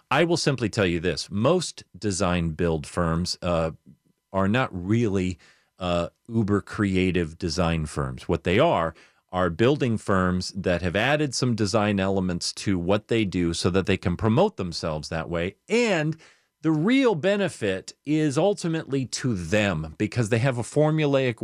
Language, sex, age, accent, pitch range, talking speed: English, male, 40-59, American, 95-130 Hz, 155 wpm